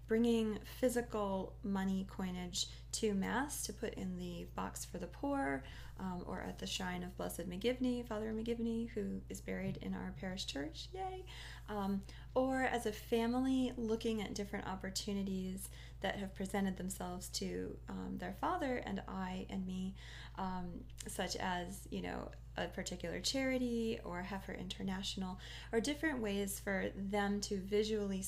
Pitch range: 185-230 Hz